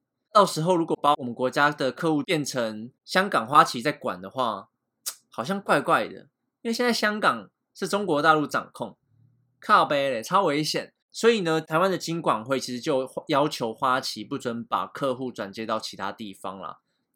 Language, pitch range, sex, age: Chinese, 120-170 Hz, male, 20-39